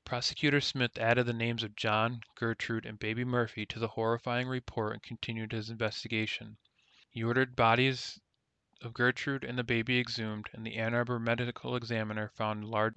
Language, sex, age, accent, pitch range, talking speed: English, male, 20-39, American, 110-125 Hz, 165 wpm